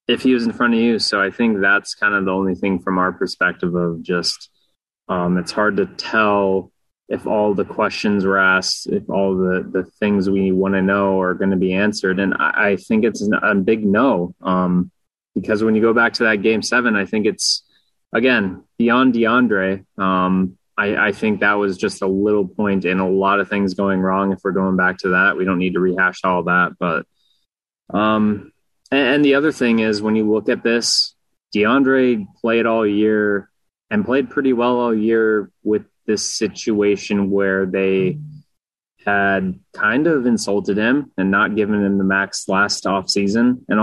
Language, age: English, 20-39